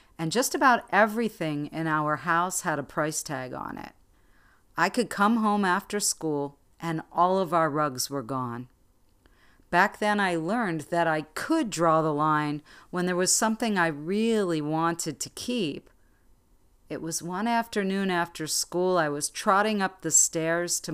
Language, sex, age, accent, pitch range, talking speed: English, female, 50-69, American, 150-185 Hz, 165 wpm